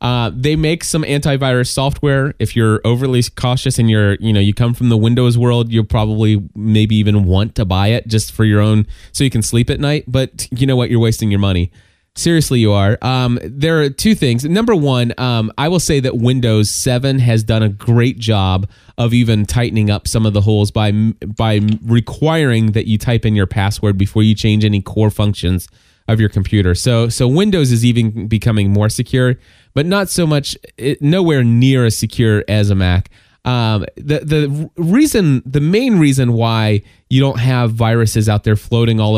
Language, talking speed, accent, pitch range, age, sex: English, 200 wpm, American, 105-130 Hz, 20-39, male